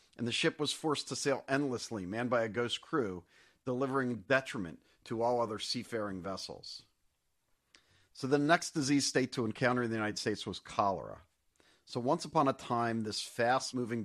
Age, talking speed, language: 50-69, 170 wpm, English